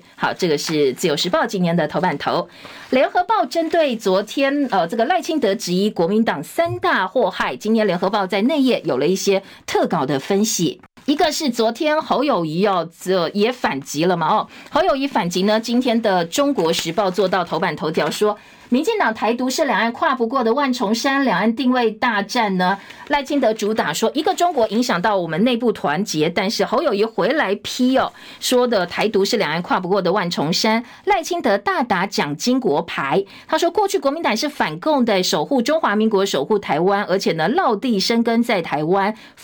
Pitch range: 195-270 Hz